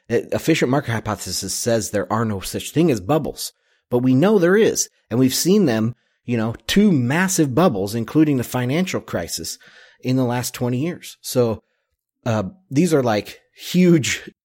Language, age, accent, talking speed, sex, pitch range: English, 30-49, American, 165 wpm, male, 105-130 Hz